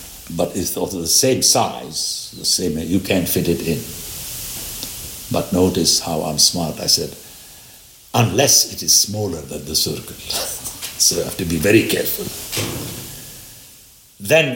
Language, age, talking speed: English, 60-79, 145 wpm